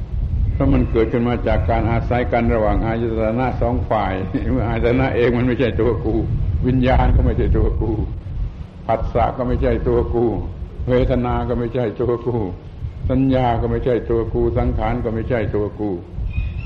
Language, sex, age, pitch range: Thai, male, 70-89, 100-125 Hz